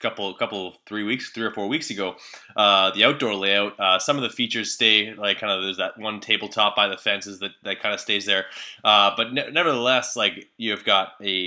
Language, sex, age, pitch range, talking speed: English, male, 20-39, 100-115 Hz, 235 wpm